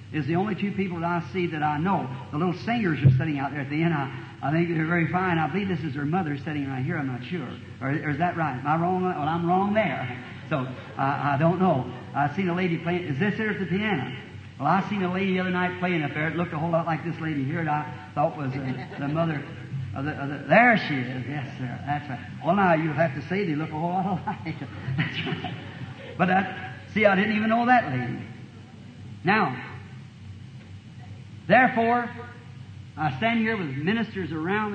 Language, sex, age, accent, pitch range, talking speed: English, male, 60-79, American, 130-185 Hz, 235 wpm